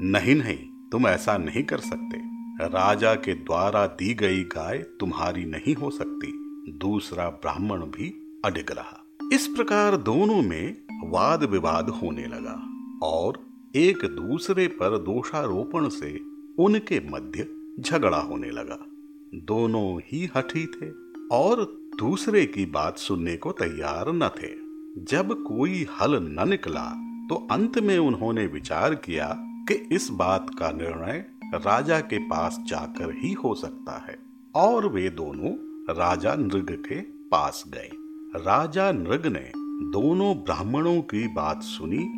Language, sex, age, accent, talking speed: Hindi, male, 50-69, native, 130 wpm